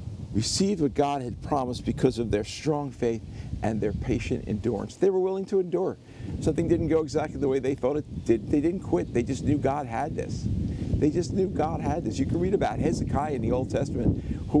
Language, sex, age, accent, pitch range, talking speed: English, male, 50-69, American, 120-180 Hz, 220 wpm